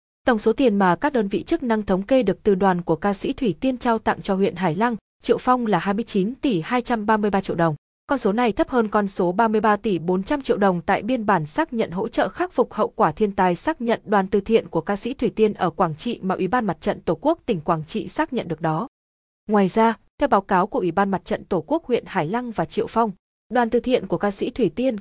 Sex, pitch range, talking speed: female, 190-245 Hz, 265 wpm